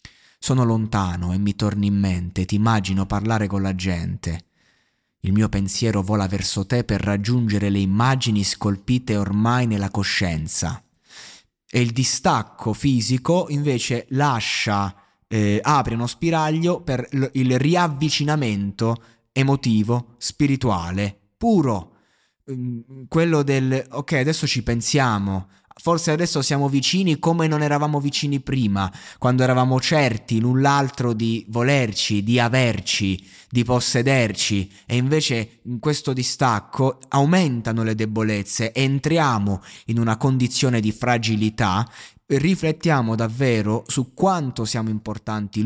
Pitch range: 105-135 Hz